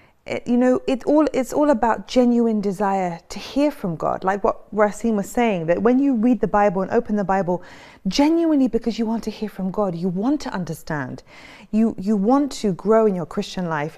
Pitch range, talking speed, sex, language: 205-255 Hz, 215 wpm, female, English